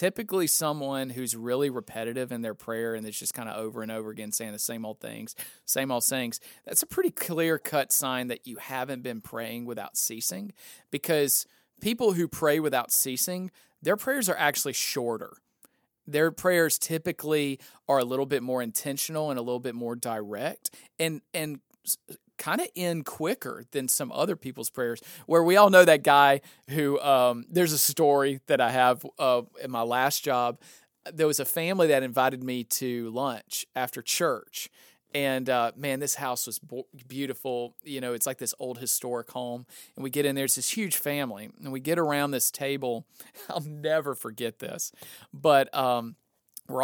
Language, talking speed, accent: English, 180 wpm, American